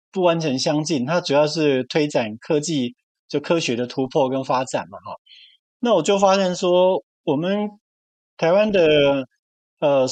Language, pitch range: Chinese, 140-195 Hz